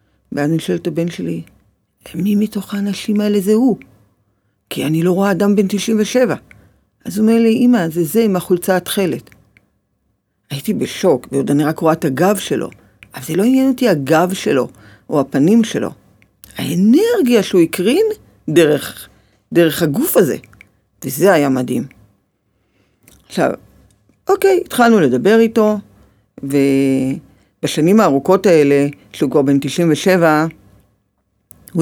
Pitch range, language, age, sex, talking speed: 130-200 Hz, Hebrew, 50-69, female, 135 wpm